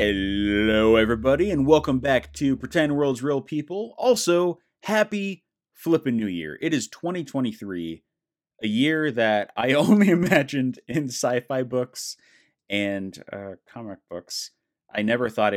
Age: 30-49